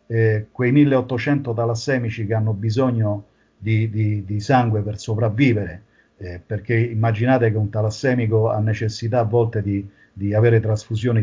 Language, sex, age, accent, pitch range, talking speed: Italian, male, 50-69, native, 110-125 Hz, 140 wpm